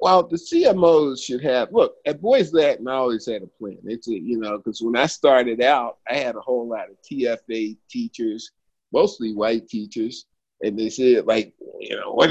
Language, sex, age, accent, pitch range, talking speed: English, male, 50-69, American, 115-155 Hz, 195 wpm